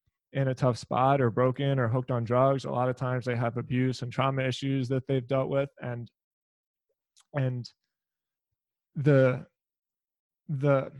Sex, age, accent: male, 20-39, American